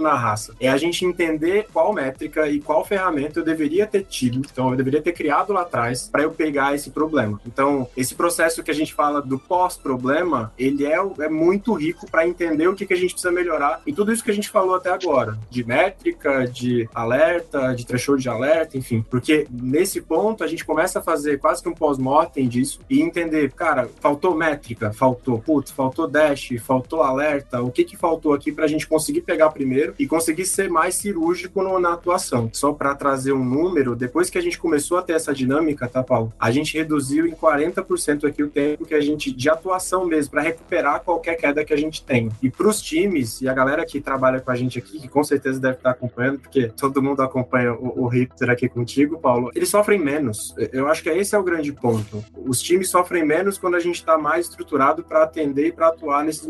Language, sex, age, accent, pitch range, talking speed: Portuguese, male, 20-39, Brazilian, 130-170 Hz, 215 wpm